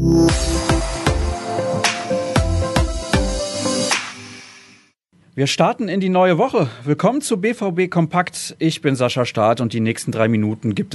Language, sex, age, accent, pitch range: German, male, 40-59, German, 120-165 Hz